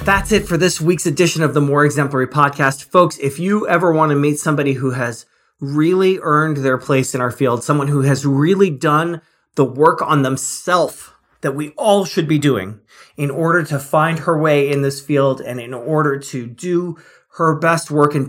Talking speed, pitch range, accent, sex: 200 wpm, 130-160 Hz, American, male